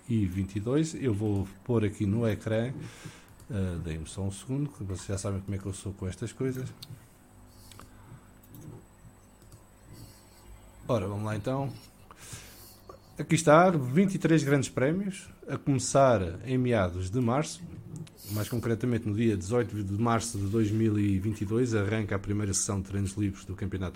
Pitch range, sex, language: 100-125 Hz, male, English